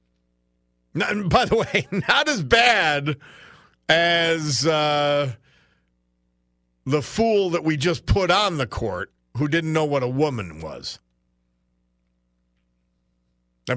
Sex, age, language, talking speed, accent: male, 50-69, English, 110 wpm, American